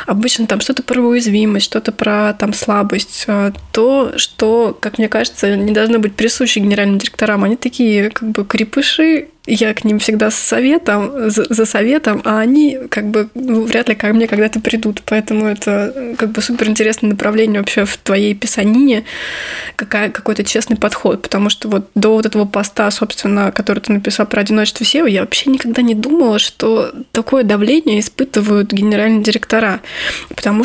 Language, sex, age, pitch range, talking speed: Russian, female, 20-39, 210-235 Hz, 170 wpm